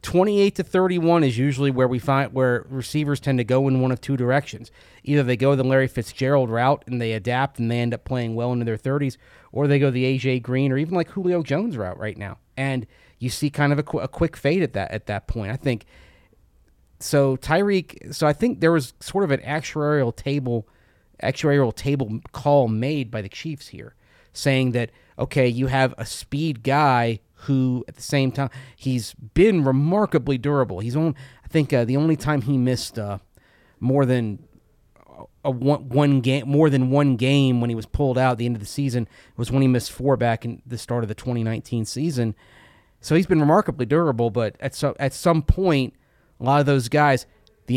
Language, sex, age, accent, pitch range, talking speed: English, male, 30-49, American, 120-145 Hz, 210 wpm